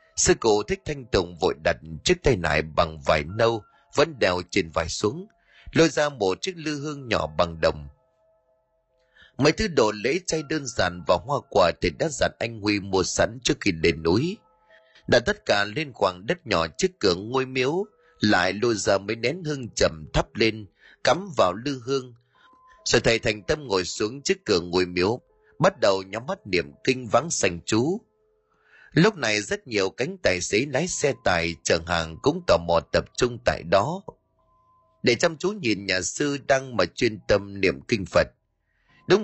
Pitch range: 95-150 Hz